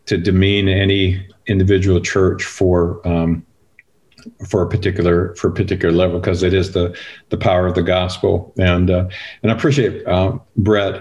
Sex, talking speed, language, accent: male, 165 wpm, English, American